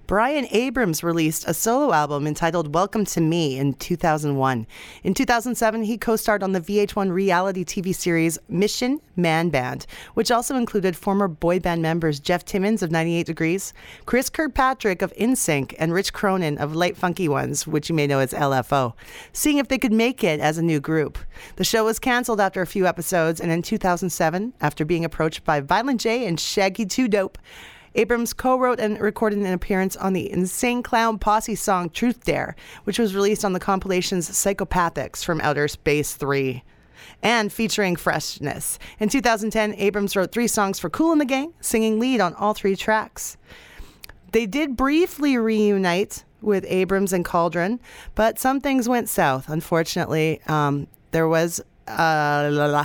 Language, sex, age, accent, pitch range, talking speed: English, female, 40-59, American, 165-220 Hz, 170 wpm